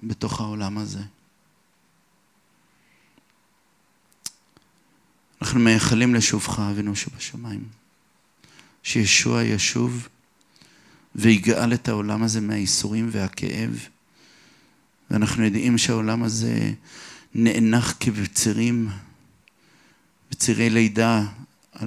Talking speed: 65 wpm